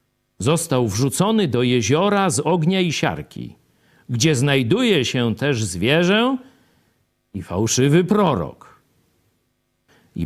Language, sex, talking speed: Polish, male, 100 wpm